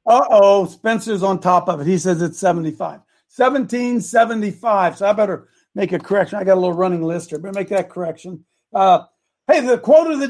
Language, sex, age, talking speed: English, male, 60-79, 205 wpm